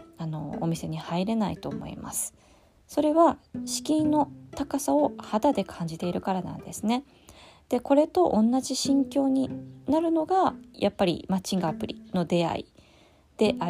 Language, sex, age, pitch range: Japanese, female, 20-39, 165-245 Hz